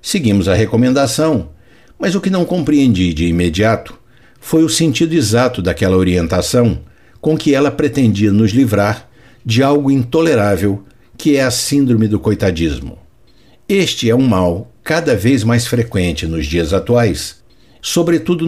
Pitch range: 95-140 Hz